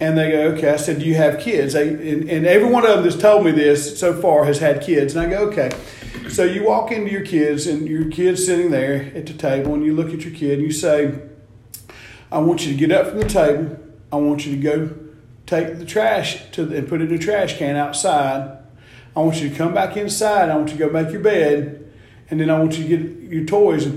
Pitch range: 135-160 Hz